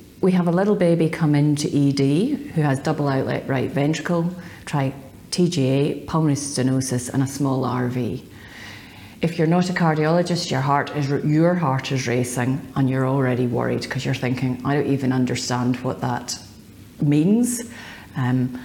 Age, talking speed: 40-59, 145 wpm